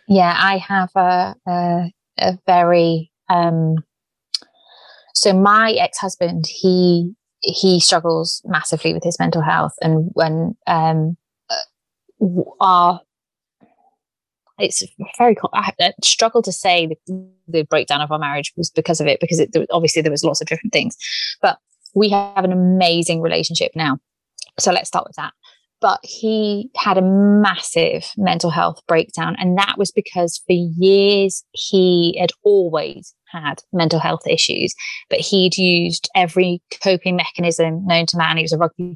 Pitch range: 165-195 Hz